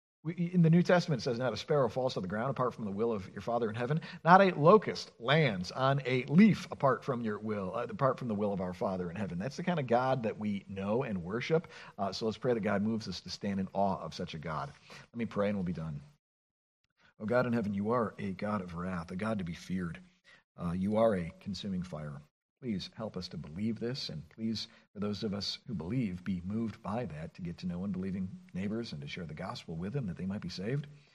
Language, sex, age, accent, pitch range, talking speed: English, male, 50-69, American, 100-170 Hz, 260 wpm